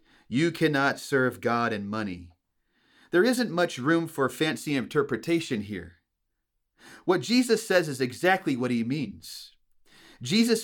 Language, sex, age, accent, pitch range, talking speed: English, male, 30-49, American, 125-175 Hz, 130 wpm